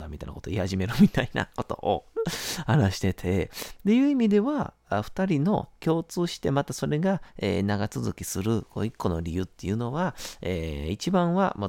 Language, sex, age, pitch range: Japanese, male, 40-59, 90-135 Hz